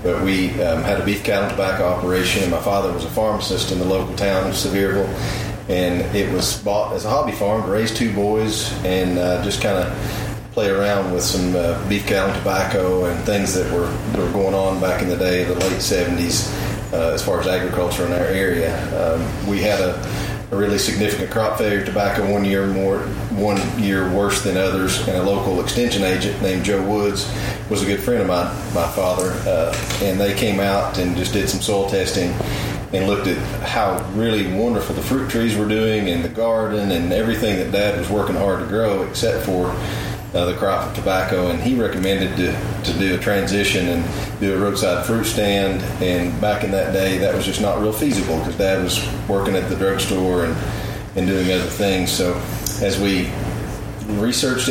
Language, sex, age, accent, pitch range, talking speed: English, male, 30-49, American, 95-105 Hz, 205 wpm